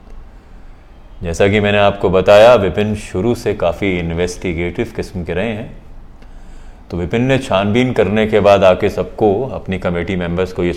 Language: Hindi